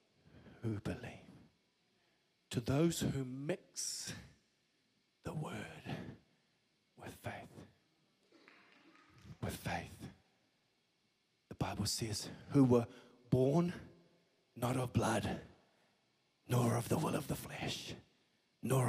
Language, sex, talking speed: English, male, 90 wpm